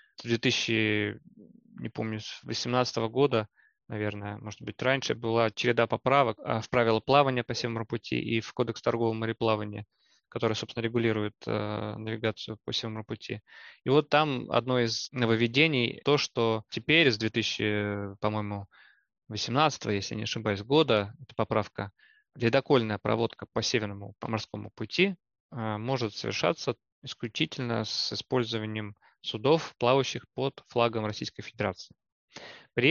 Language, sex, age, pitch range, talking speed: Russian, male, 20-39, 110-125 Hz, 130 wpm